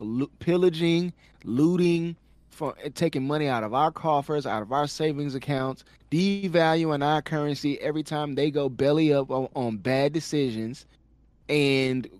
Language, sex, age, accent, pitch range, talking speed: English, male, 20-39, American, 125-160 Hz, 140 wpm